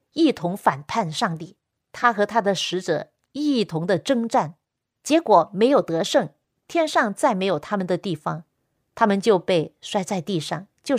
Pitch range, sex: 170-260 Hz, female